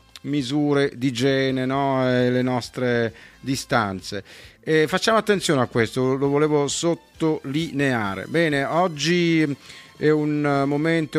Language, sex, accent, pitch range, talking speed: Italian, male, native, 125-155 Hz, 120 wpm